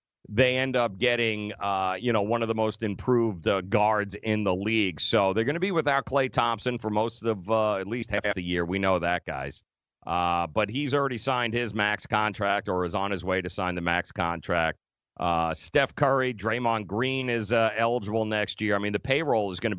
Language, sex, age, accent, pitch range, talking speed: English, male, 40-59, American, 100-120 Hz, 220 wpm